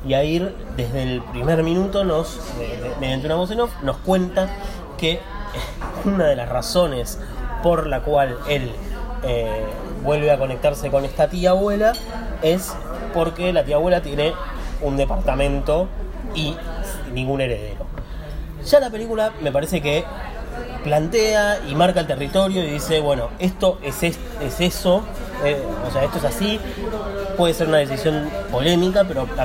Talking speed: 150 wpm